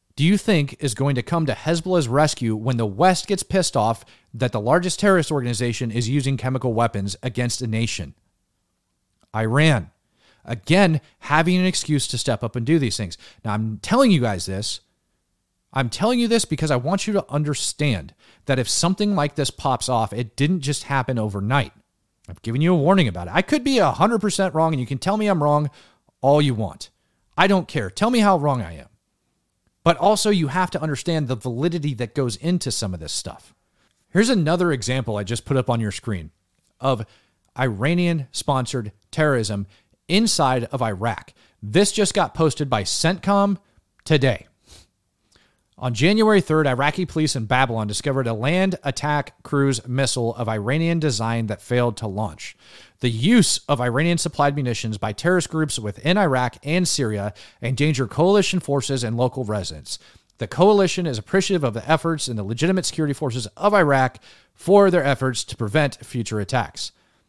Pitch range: 115-170 Hz